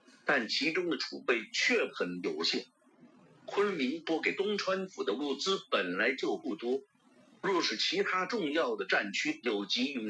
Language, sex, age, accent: Chinese, male, 50-69, native